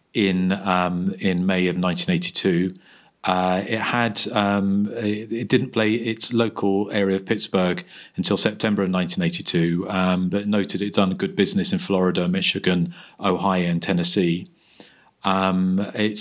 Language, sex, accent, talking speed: English, male, British, 140 wpm